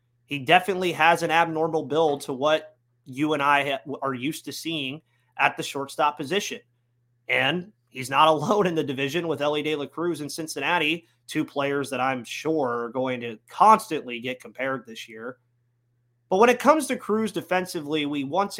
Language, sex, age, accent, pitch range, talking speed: English, male, 30-49, American, 130-165 Hz, 175 wpm